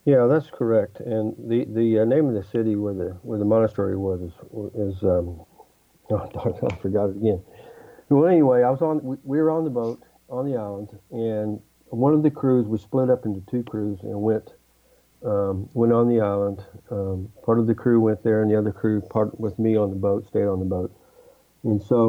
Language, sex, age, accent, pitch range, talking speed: English, male, 50-69, American, 100-115 Hz, 215 wpm